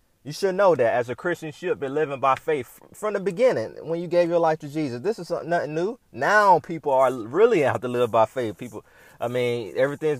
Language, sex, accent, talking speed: English, male, American, 240 wpm